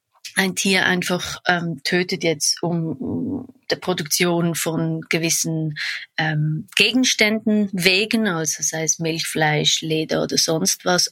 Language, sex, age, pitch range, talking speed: German, female, 20-39, 165-195 Hz, 125 wpm